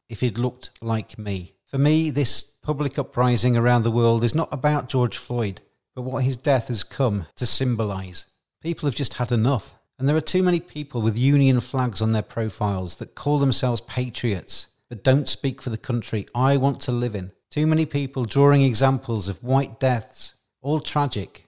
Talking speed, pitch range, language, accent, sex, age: 190 wpm, 110-135 Hz, English, British, male, 40-59